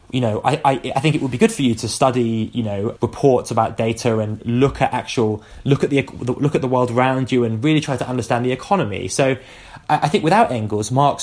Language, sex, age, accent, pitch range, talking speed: English, male, 20-39, British, 110-145 Hz, 245 wpm